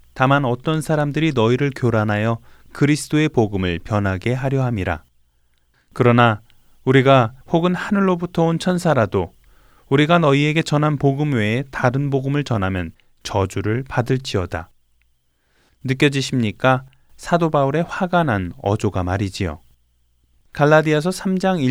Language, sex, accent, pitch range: Korean, male, native, 105-150 Hz